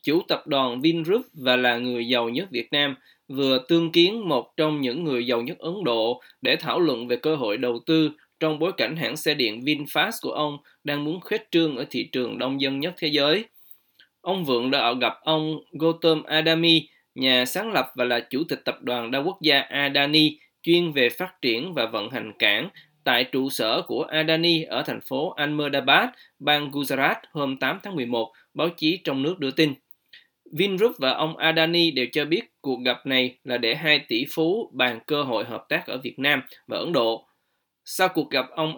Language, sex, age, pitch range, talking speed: Vietnamese, male, 20-39, 125-165 Hz, 200 wpm